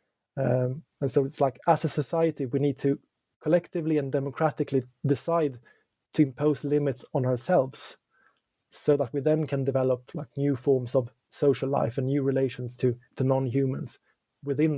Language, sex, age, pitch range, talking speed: English, male, 30-49, 130-155 Hz, 160 wpm